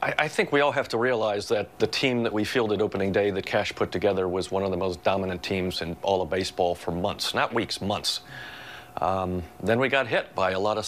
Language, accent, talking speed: English, American, 245 wpm